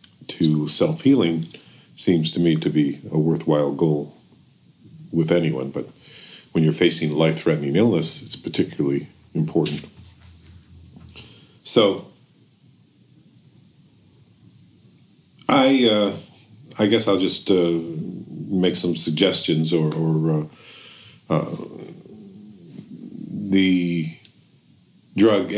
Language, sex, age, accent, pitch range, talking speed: English, male, 50-69, American, 80-90 Hz, 90 wpm